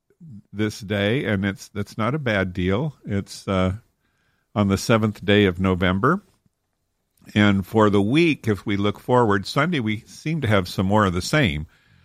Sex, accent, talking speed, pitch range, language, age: male, American, 175 wpm, 95-115 Hz, English, 50-69